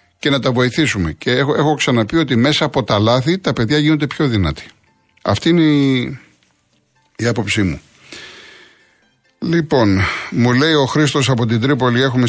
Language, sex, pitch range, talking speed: Greek, male, 100-135 Hz, 160 wpm